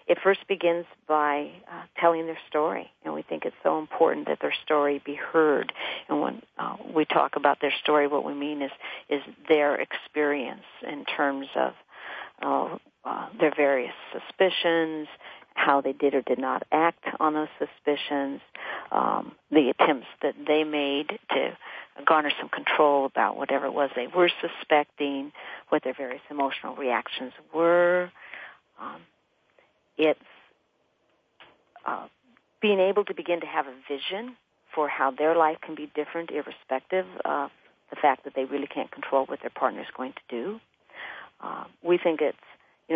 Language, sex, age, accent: English, female, 50-69, American